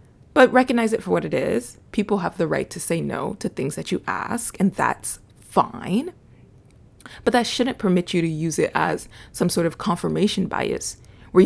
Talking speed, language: 195 wpm, English